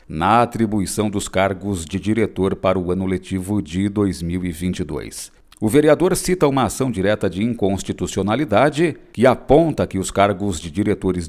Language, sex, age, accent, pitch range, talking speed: Portuguese, male, 50-69, Brazilian, 90-125 Hz, 145 wpm